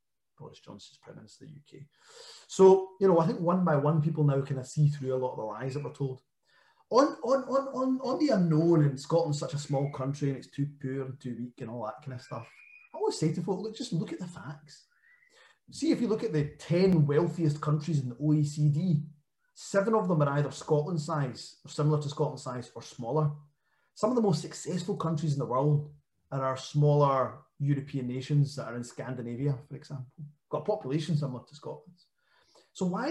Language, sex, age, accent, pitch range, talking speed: English, male, 30-49, British, 140-170 Hz, 220 wpm